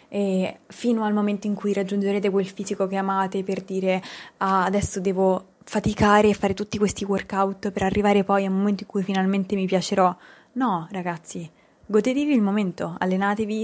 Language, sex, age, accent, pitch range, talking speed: Italian, female, 20-39, native, 190-220 Hz, 165 wpm